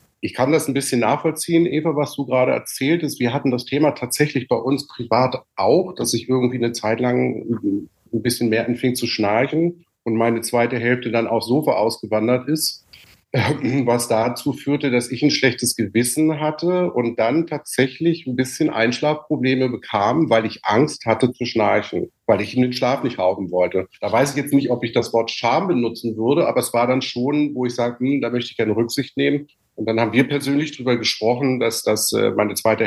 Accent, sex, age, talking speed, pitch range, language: German, male, 50-69, 200 wpm, 110-130 Hz, German